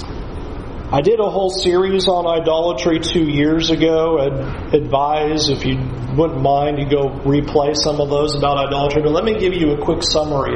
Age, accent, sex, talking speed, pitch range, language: 40-59, American, male, 180 wpm, 145-190 Hz, English